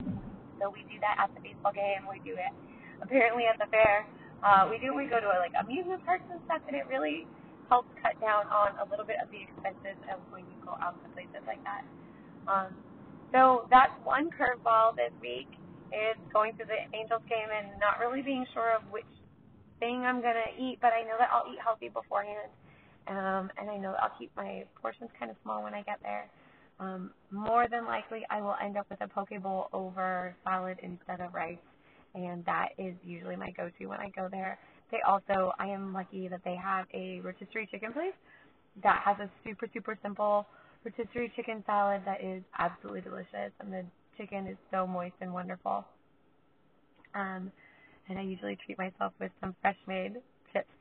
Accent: American